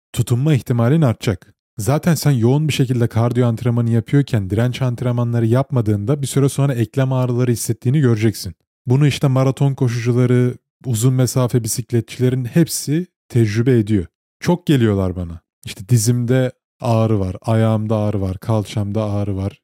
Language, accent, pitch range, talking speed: Turkish, native, 110-135 Hz, 135 wpm